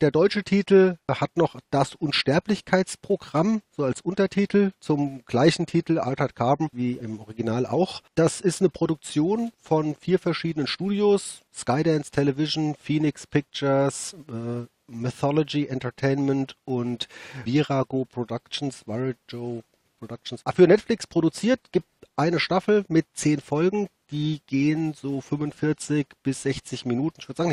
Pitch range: 130-160 Hz